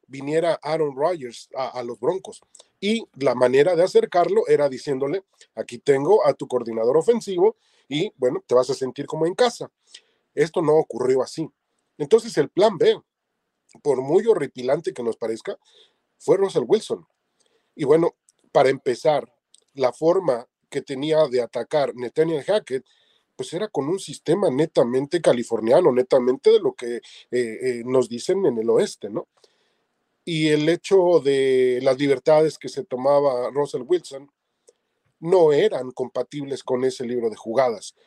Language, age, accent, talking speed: English, 40-59, Mexican, 150 wpm